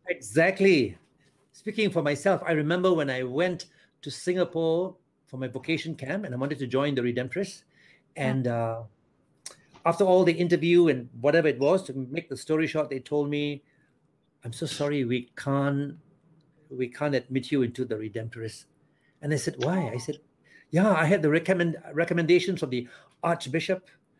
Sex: male